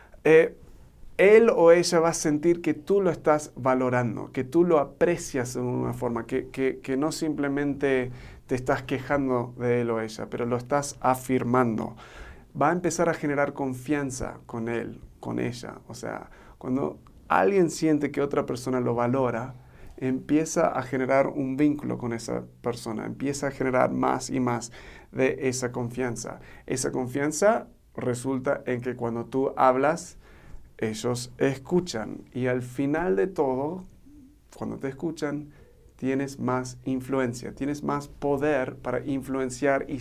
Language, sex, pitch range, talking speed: Spanish, male, 125-145 Hz, 150 wpm